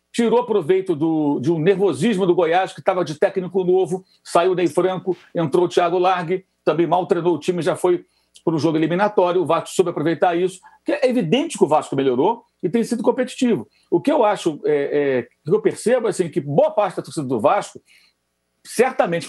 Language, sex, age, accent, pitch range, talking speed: Portuguese, male, 60-79, Brazilian, 175-245 Hz, 195 wpm